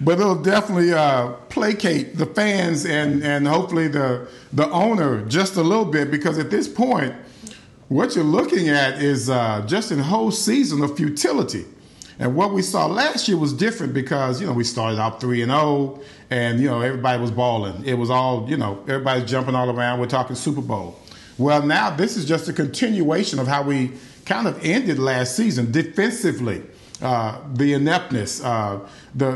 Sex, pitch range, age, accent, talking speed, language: male, 130-185 Hz, 50-69, American, 185 wpm, English